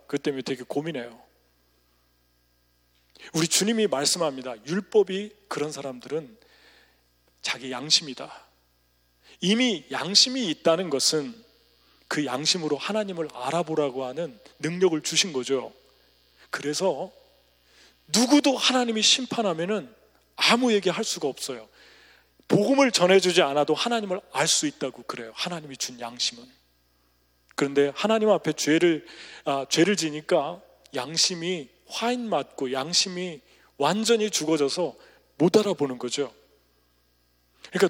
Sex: male